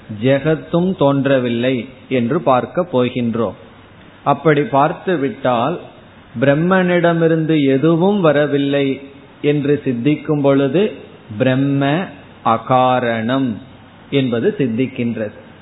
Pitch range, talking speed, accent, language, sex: 125-155 Hz, 65 wpm, native, Tamil, male